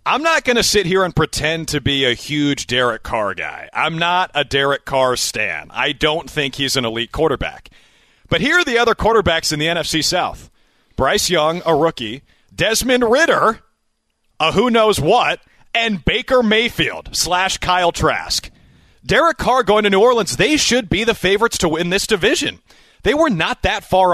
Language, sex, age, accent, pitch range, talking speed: English, male, 30-49, American, 145-210 Hz, 185 wpm